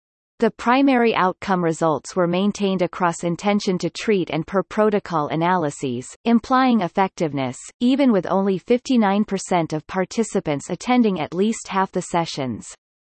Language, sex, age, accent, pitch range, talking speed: English, female, 30-49, American, 170-215 Hz, 115 wpm